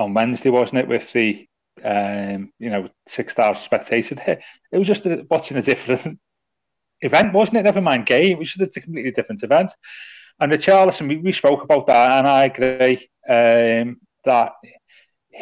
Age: 30-49